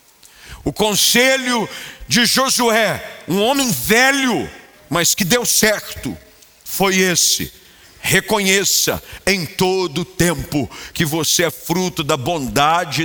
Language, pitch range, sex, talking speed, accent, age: Portuguese, 175-240 Hz, male, 105 wpm, Brazilian, 50-69